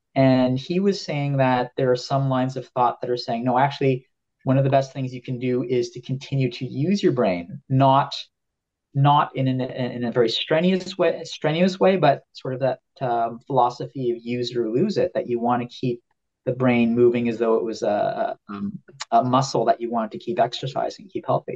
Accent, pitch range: American, 125-145 Hz